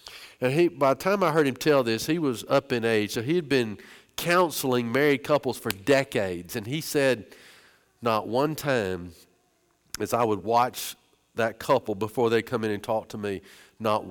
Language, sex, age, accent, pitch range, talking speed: English, male, 50-69, American, 135-185 Hz, 185 wpm